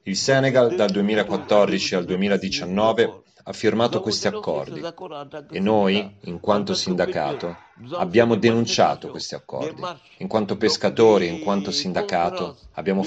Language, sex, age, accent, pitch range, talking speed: Italian, male, 40-59, native, 100-140 Hz, 120 wpm